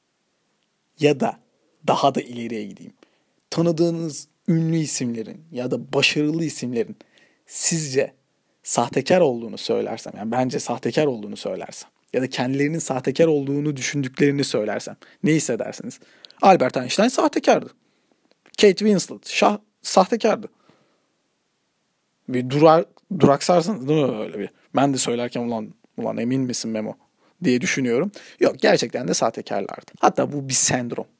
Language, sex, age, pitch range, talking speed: Turkish, male, 40-59, 125-160 Hz, 120 wpm